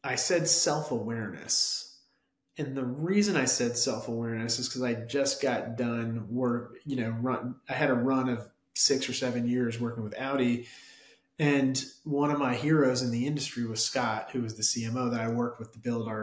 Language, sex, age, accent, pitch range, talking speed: English, male, 30-49, American, 115-135 Hz, 190 wpm